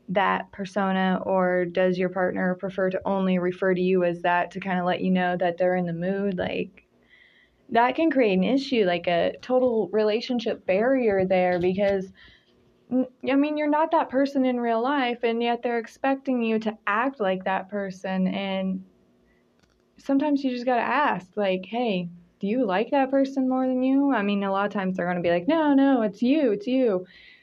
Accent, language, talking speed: American, English, 195 wpm